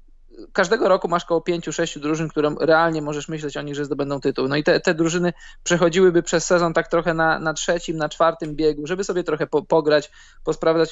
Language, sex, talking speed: Polish, male, 210 wpm